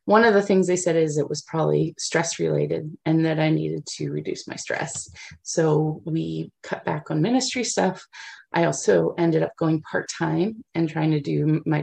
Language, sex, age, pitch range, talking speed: English, female, 30-49, 150-170 Hz, 190 wpm